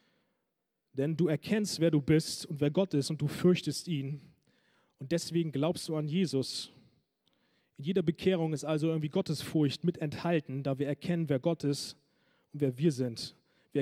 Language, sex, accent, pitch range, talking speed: German, male, German, 140-170 Hz, 175 wpm